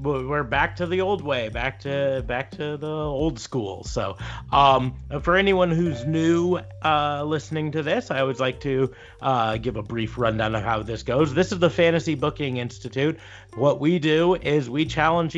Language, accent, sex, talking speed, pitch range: English, American, male, 185 wpm, 120-155 Hz